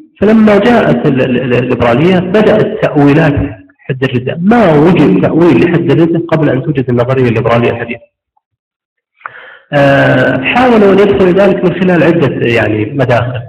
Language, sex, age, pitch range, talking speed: Arabic, male, 40-59, 125-185 Hz, 140 wpm